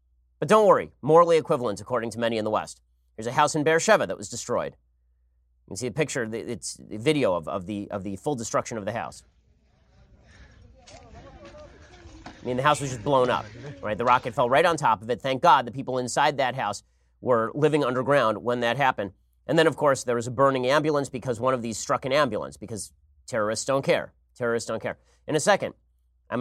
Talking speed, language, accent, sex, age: 210 wpm, English, American, male, 30-49